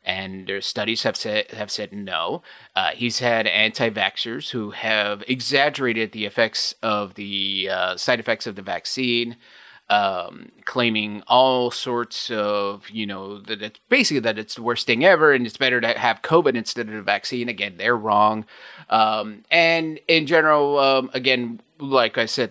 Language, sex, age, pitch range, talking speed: English, male, 30-49, 105-130 Hz, 170 wpm